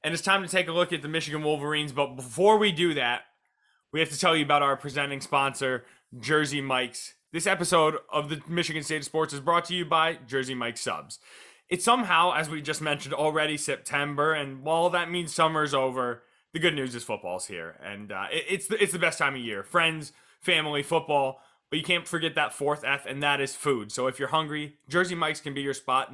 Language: English